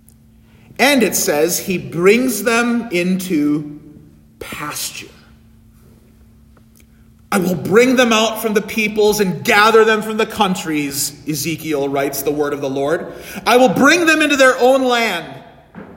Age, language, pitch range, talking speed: 40-59, English, 175-270 Hz, 140 wpm